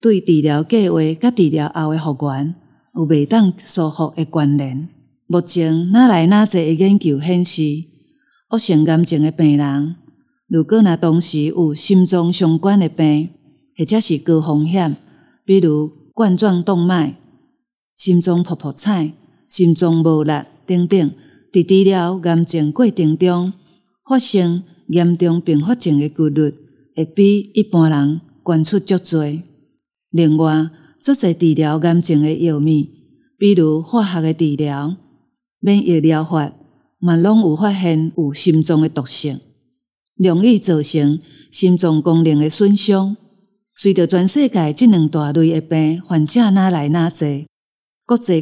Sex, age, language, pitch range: female, 50-69, Chinese, 155-190 Hz